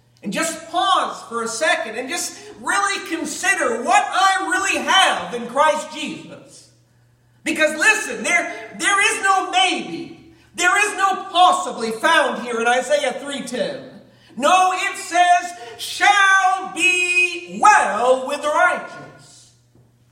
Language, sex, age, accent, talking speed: English, male, 50-69, American, 125 wpm